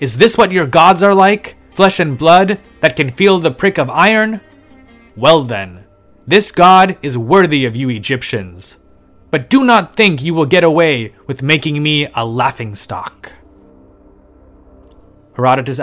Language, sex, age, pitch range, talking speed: English, male, 30-49, 115-160 Hz, 150 wpm